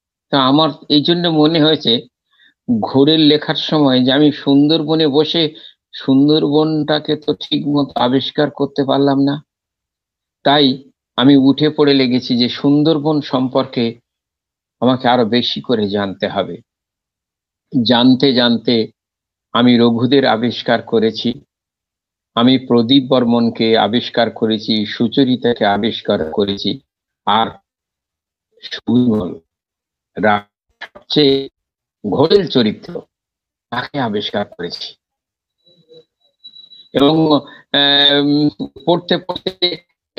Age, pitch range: 50-69, 120-155 Hz